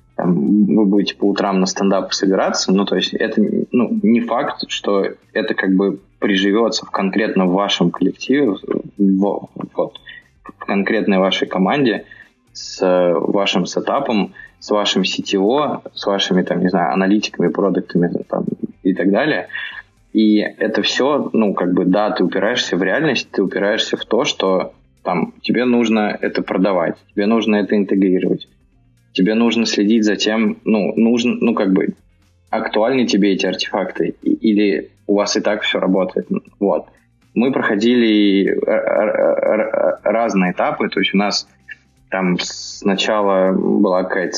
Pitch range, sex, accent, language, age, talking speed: 95-105 Hz, male, native, Russian, 20-39, 145 wpm